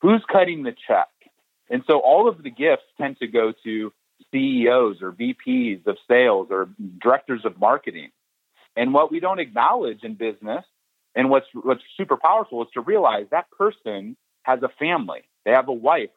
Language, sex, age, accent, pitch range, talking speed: English, male, 40-59, American, 115-185 Hz, 175 wpm